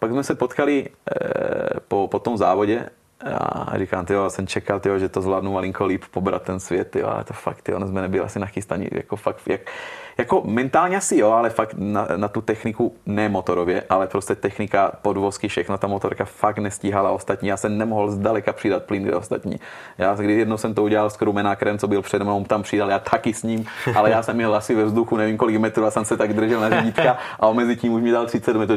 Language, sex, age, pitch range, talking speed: Czech, male, 30-49, 100-140 Hz, 225 wpm